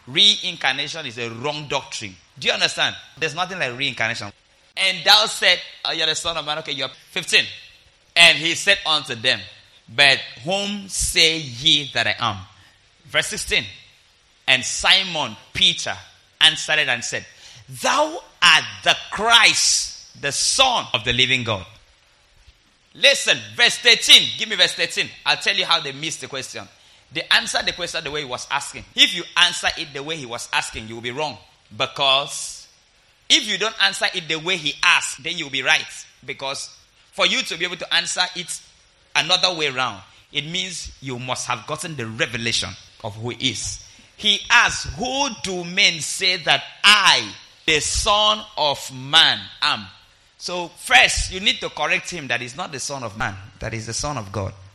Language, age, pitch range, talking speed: English, 30-49, 120-175 Hz, 180 wpm